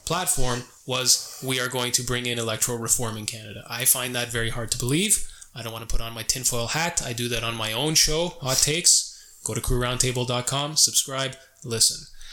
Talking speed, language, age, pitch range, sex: 205 wpm, English, 20-39, 120-145 Hz, male